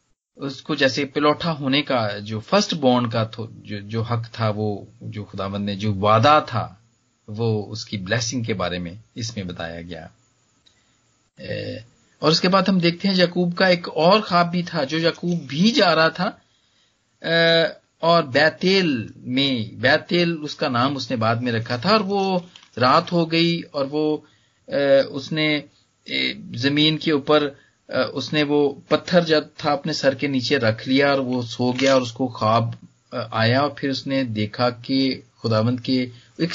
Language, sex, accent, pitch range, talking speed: Hindi, male, native, 115-160 Hz, 160 wpm